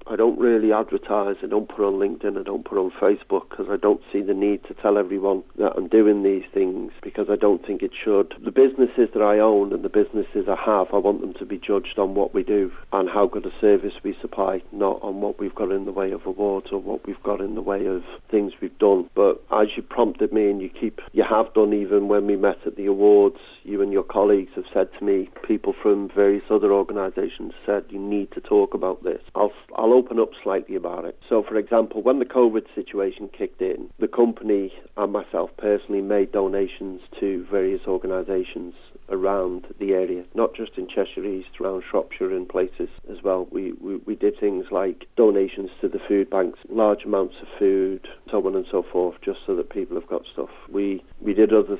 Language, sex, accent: English, male, British